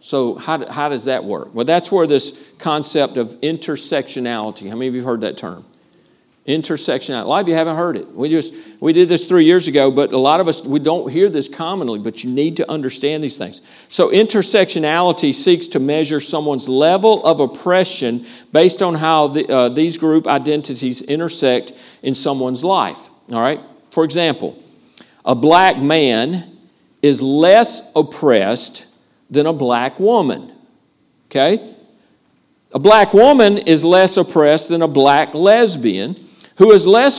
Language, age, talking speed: English, 50-69, 165 wpm